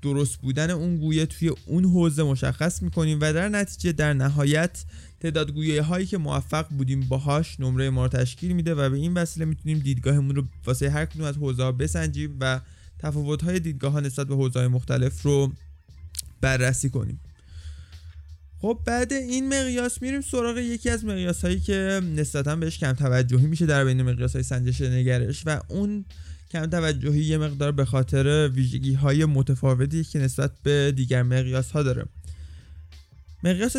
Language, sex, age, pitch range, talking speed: Persian, male, 20-39, 125-165 Hz, 160 wpm